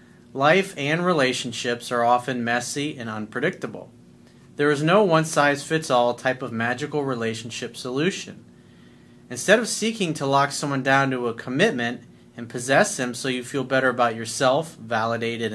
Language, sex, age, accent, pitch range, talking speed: English, male, 40-59, American, 120-150 Hz, 145 wpm